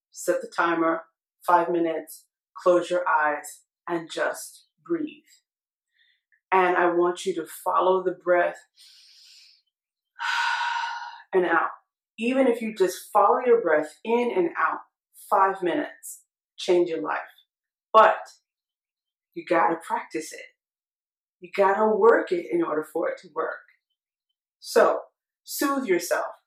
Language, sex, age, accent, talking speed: English, female, 30-49, American, 120 wpm